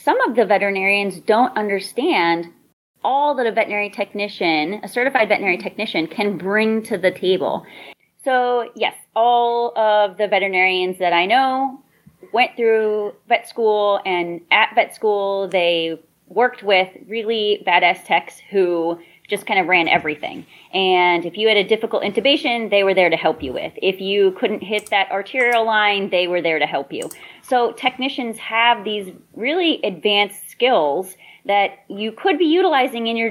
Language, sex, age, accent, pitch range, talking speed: English, female, 30-49, American, 190-235 Hz, 160 wpm